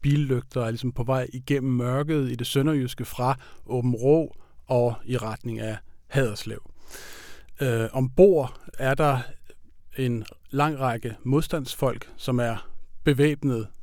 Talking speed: 125 wpm